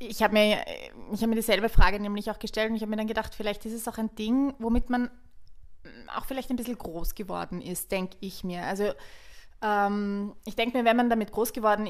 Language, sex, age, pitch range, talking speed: German, female, 20-39, 185-225 Hz, 225 wpm